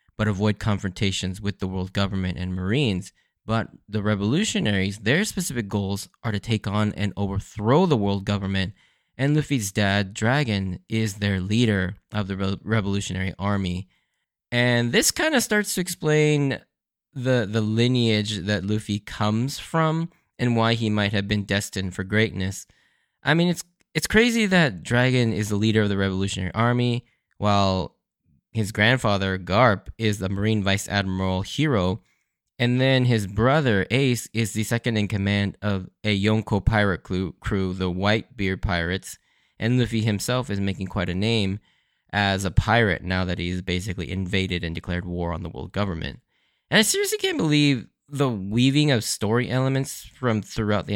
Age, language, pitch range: 10-29, English, 95-125 Hz